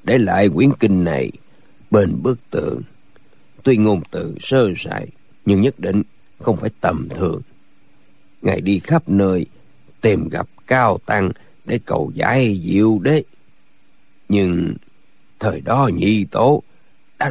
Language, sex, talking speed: Vietnamese, male, 135 wpm